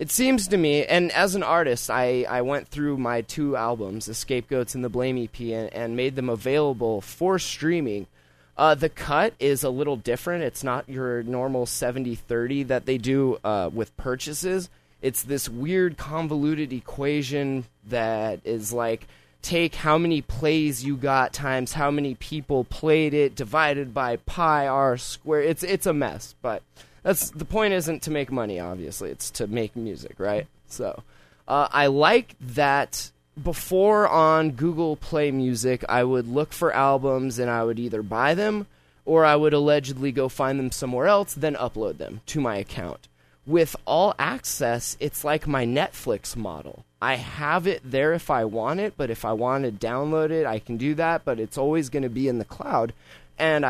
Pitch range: 120-155 Hz